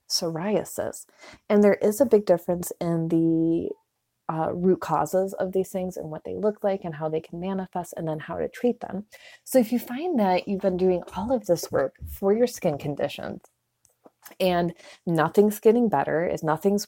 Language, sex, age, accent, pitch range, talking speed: English, female, 30-49, American, 160-200 Hz, 190 wpm